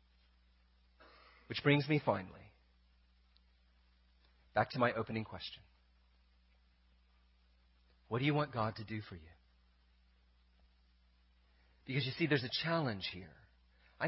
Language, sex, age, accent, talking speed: English, male, 40-59, American, 110 wpm